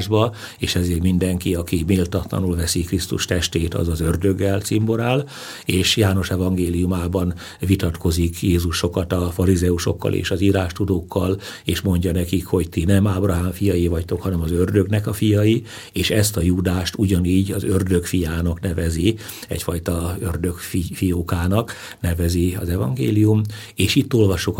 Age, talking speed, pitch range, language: 60-79, 135 wpm, 85-100 Hz, Hungarian